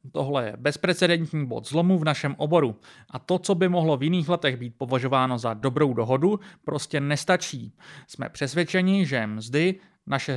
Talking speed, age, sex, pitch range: 160 wpm, 30-49, male, 135-185 Hz